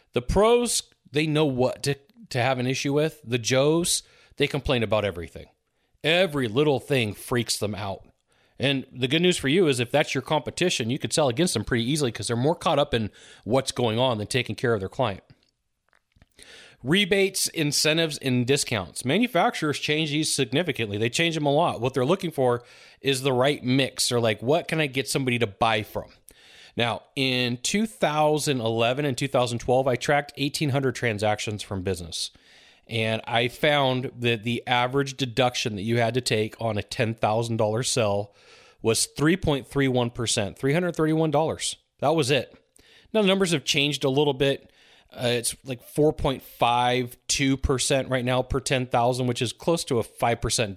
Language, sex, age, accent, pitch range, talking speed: English, male, 40-59, American, 120-150 Hz, 170 wpm